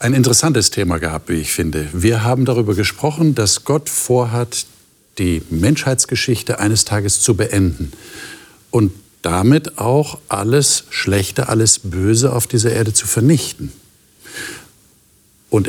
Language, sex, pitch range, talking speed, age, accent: German, male, 95-130 Hz, 125 wpm, 50-69, German